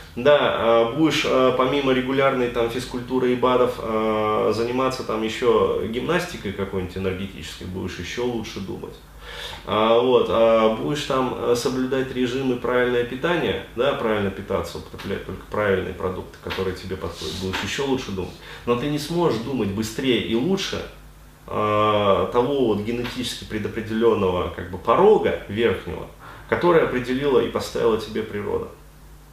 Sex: male